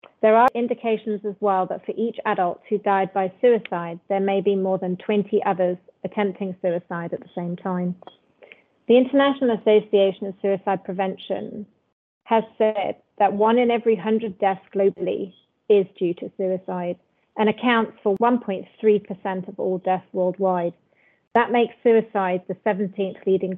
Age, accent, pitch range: 30-49, British, 190-215 Hz